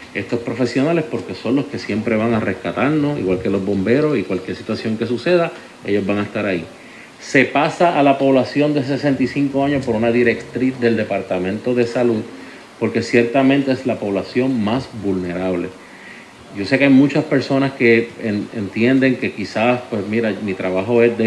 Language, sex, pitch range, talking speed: Spanish, male, 105-130 Hz, 175 wpm